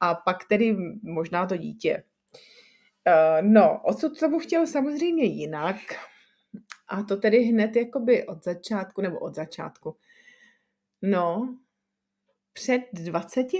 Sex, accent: female, native